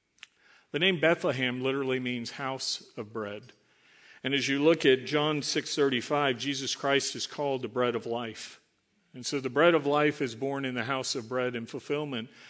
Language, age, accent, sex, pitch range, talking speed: English, 50-69, American, male, 125-145 Hz, 185 wpm